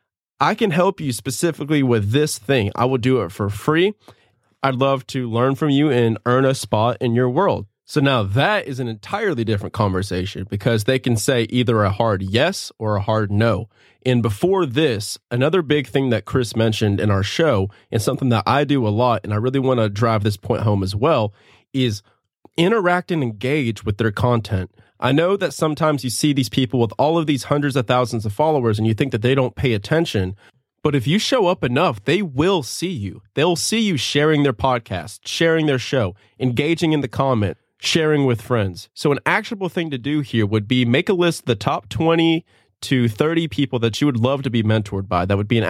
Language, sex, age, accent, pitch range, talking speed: English, male, 20-39, American, 110-145 Hz, 220 wpm